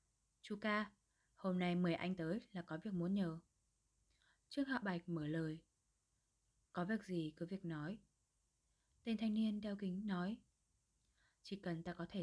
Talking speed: 165 wpm